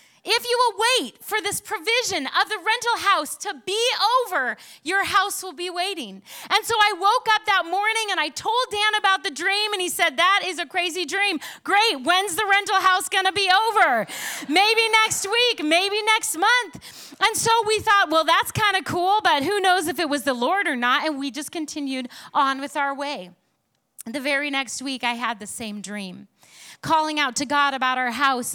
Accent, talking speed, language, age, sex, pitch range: American, 210 wpm, English, 30-49, female, 250-390 Hz